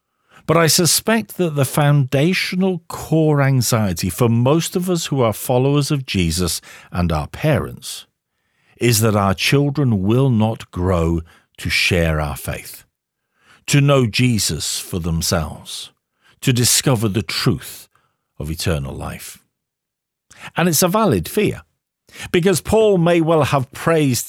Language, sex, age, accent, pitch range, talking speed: English, male, 50-69, British, 95-150 Hz, 135 wpm